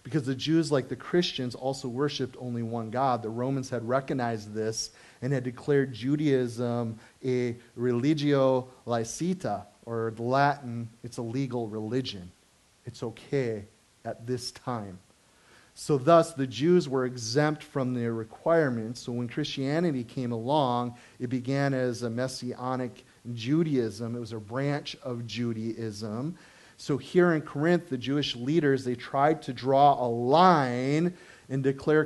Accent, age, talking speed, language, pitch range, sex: American, 30-49, 140 wpm, English, 120-145 Hz, male